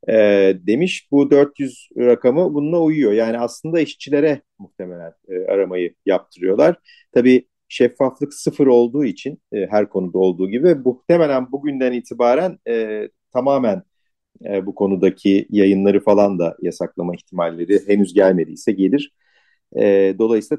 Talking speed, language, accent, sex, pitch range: 105 wpm, Turkish, native, male, 95-140 Hz